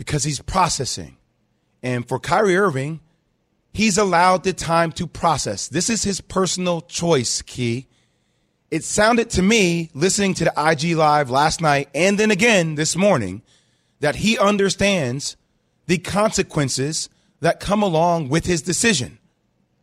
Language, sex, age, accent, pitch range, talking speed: English, male, 30-49, American, 140-185 Hz, 140 wpm